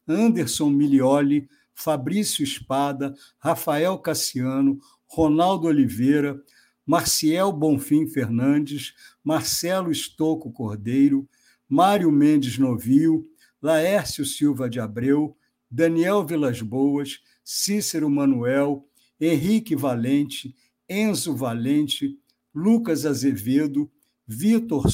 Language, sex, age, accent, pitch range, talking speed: Portuguese, male, 60-79, Brazilian, 140-185 Hz, 80 wpm